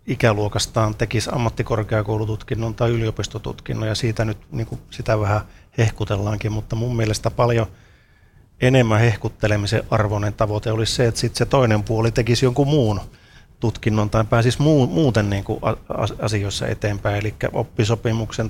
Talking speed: 120 wpm